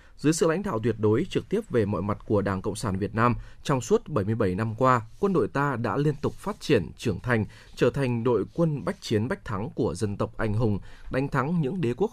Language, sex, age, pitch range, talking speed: Vietnamese, male, 20-39, 105-145 Hz, 245 wpm